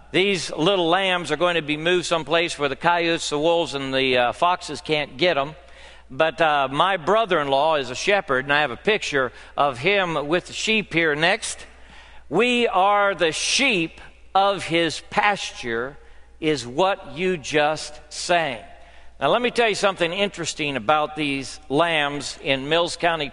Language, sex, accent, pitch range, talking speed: English, male, American, 135-185 Hz, 165 wpm